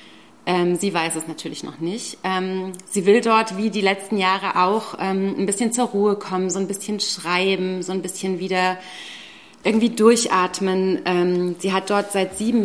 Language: German